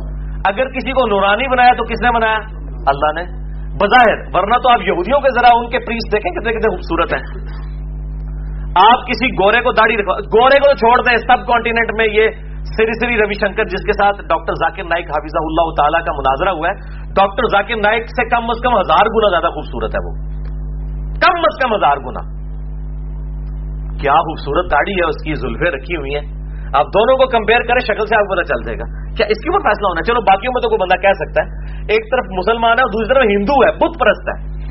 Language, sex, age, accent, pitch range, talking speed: English, male, 40-59, Indian, 150-220 Hz, 180 wpm